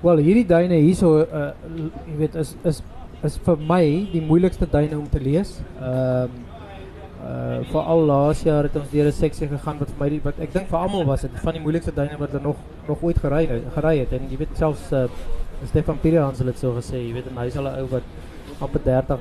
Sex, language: male, English